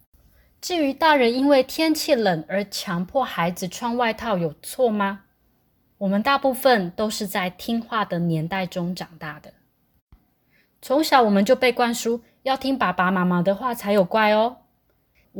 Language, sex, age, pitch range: Chinese, female, 20-39, 180-240 Hz